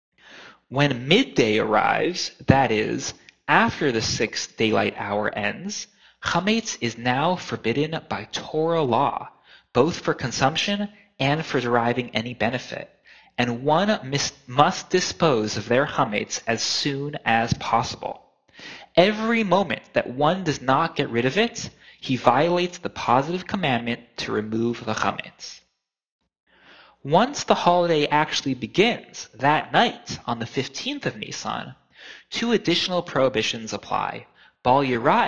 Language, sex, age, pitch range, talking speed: English, male, 30-49, 120-180 Hz, 125 wpm